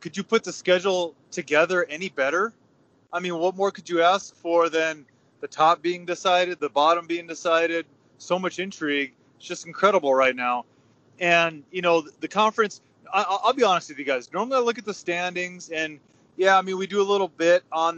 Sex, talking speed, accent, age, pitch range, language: male, 200 wpm, American, 20-39, 145-180 Hz, English